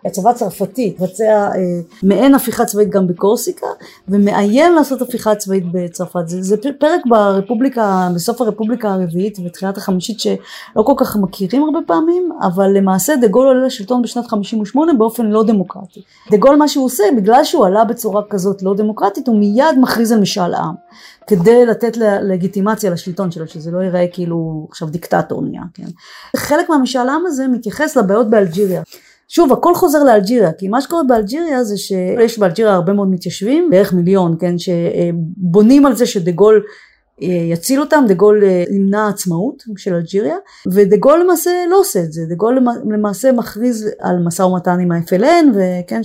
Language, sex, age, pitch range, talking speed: Hebrew, female, 30-49, 190-260 Hz, 160 wpm